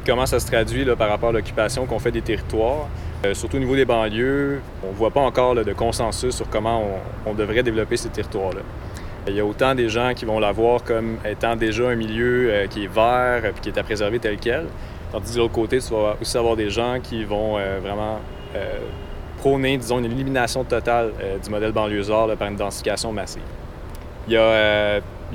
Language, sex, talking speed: French, male, 225 wpm